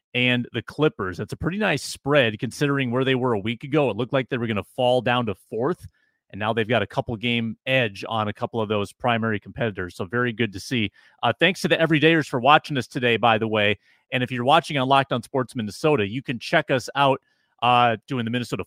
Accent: American